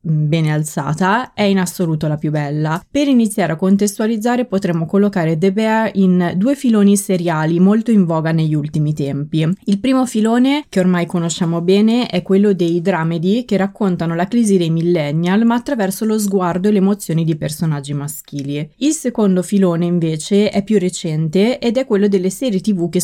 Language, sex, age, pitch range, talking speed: Italian, female, 20-39, 165-210 Hz, 175 wpm